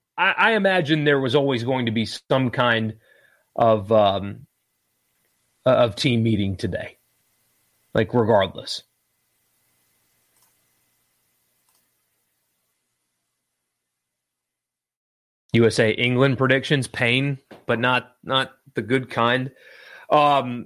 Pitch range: 110-135 Hz